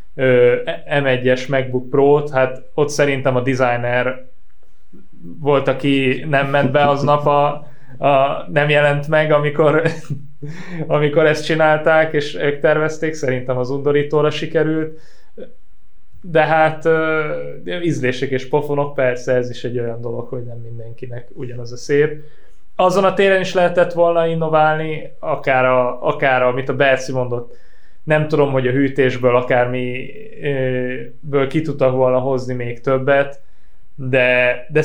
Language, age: Hungarian, 20-39